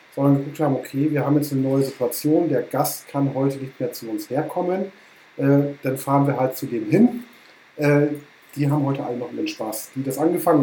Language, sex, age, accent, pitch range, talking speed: German, male, 40-59, German, 140-175 Hz, 215 wpm